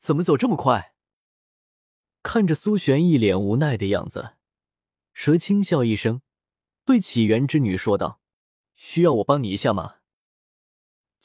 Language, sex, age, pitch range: Chinese, male, 20-39, 110-155 Hz